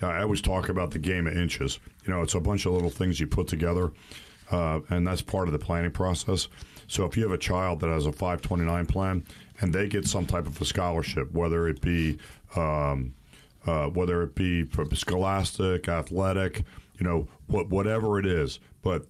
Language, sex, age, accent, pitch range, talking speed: English, male, 40-59, American, 85-95 Hz, 205 wpm